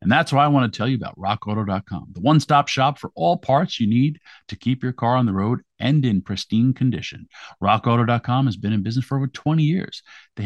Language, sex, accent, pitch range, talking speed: English, male, American, 110-145 Hz, 225 wpm